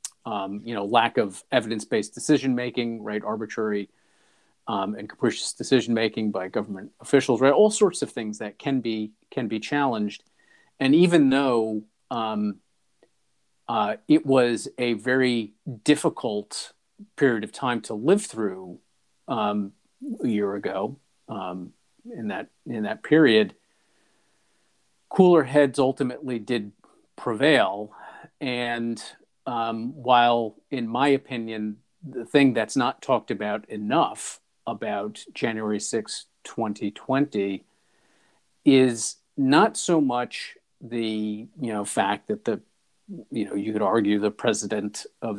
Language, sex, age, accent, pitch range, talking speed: English, male, 40-59, American, 105-135 Hz, 125 wpm